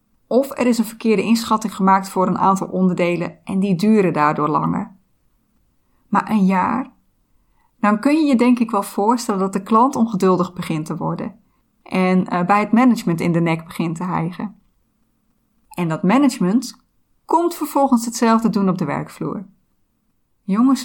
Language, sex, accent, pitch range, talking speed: Dutch, female, Dutch, 185-230 Hz, 160 wpm